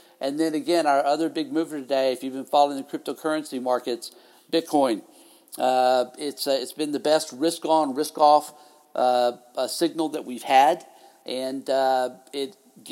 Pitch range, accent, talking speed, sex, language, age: 130-160 Hz, American, 150 wpm, male, English, 60-79